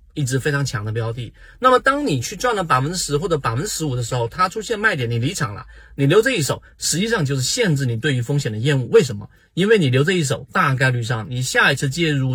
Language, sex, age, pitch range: Chinese, male, 30-49, 115-150 Hz